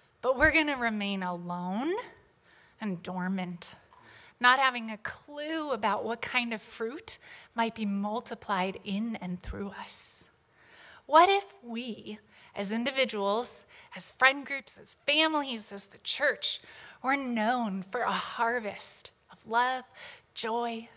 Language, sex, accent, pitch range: English, female, American, 210-270 Hz